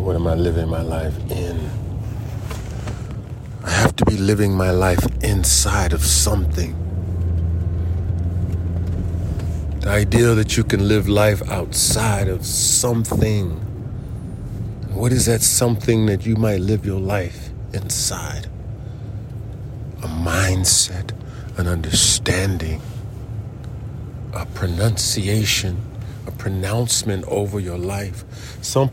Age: 40-59